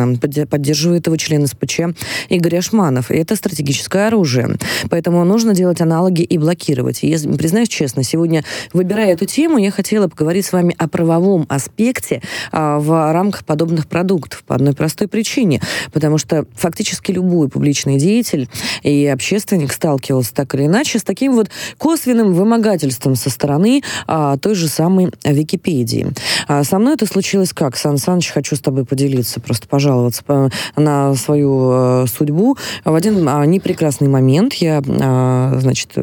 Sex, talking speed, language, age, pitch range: female, 140 wpm, Russian, 20-39, 130-180 Hz